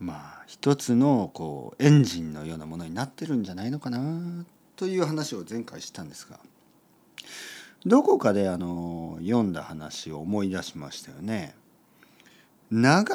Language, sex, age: Japanese, male, 40-59